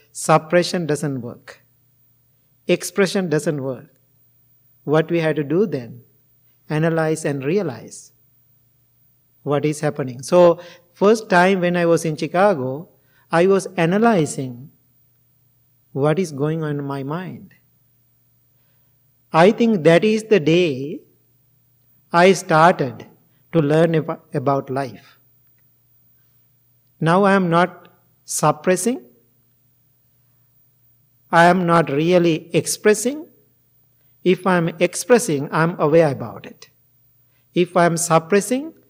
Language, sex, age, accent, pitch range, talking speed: English, male, 50-69, Indian, 130-175 Hz, 110 wpm